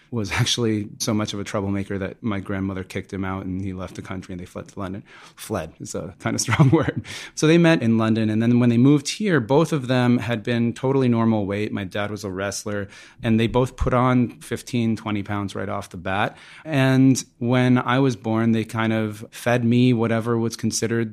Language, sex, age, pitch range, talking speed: English, male, 30-49, 105-120 Hz, 225 wpm